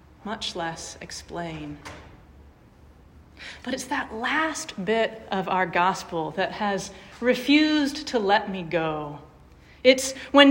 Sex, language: female, English